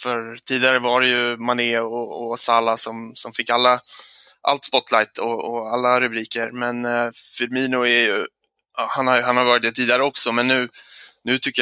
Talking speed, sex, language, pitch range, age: 190 wpm, male, English, 115-130 Hz, 20-39